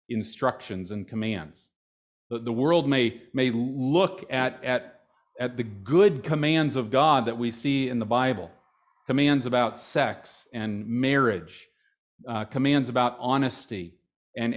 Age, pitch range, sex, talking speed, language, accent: 50-69, 120-145 Hz, male, 135 wpm, English, American